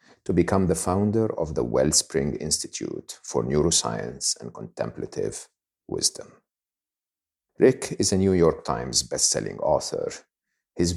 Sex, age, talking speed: male, 50-69, 120 wpm